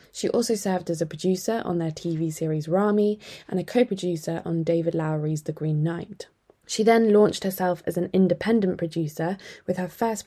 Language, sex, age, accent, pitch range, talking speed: English, female, 20-39, British, 160-195 Hz, 180 wpm